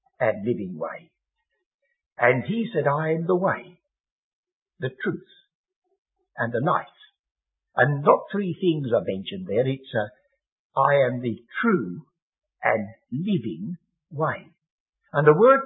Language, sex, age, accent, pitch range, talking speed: English, male, 60-79, British, 135-210 Hz, 125 wpm